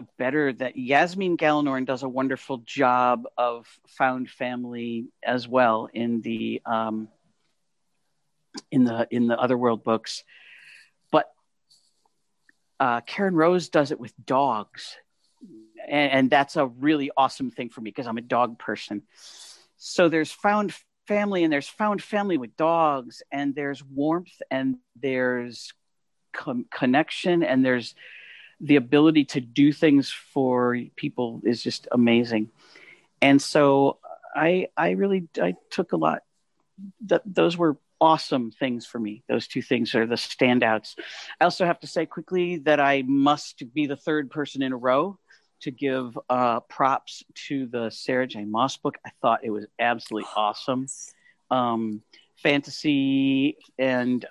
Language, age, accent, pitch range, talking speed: English, 50-69, American, 120-155 Hz, 145 wpm